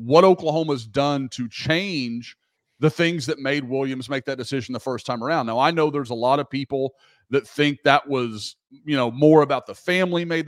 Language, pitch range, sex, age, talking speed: English, 120-155 Hz, male, 30-49, 205 wpm